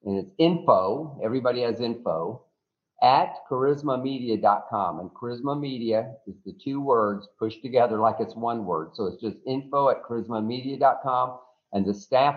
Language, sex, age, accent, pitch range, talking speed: English, male, 50-69, American, 125-160 Hz, 145 wpm